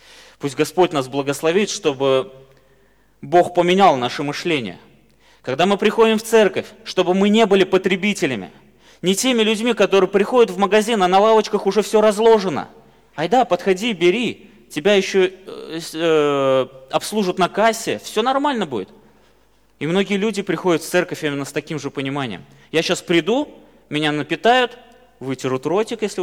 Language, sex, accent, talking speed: Russian, male, native, 150 wpm